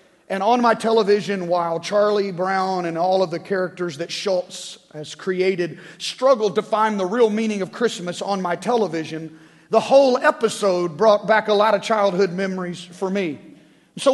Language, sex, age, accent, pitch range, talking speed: English, male, 40-59, American, 175-215 Hz, 170 wpm